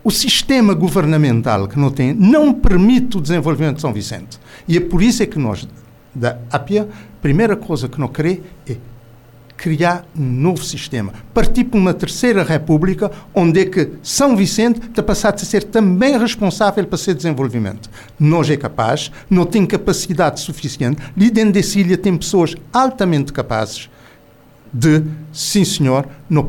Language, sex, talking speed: Portuguese, male, 160 wpm